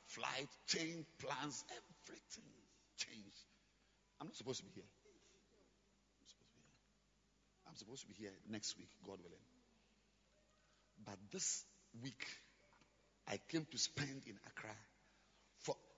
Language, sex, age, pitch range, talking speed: English, male, 50-69, 105-150 Hz, 130 wpm